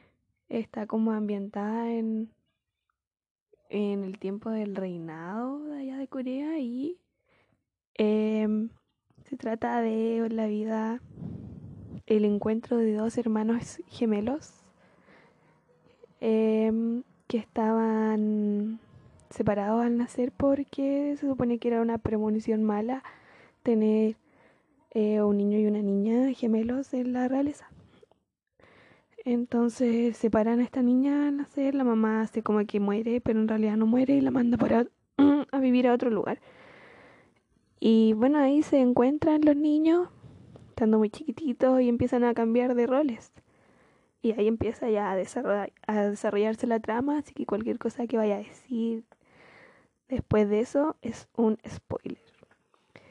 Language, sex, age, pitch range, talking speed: Spanish, female, 10-29, 215-255 Hz, 135 wpm